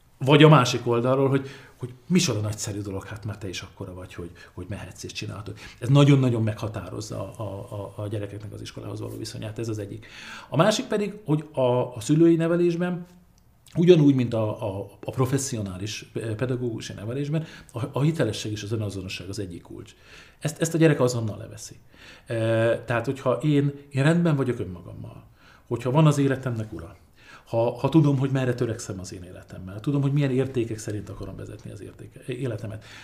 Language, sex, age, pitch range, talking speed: Hungarian, male, 50-69, 105-140 Hz, 180 wpm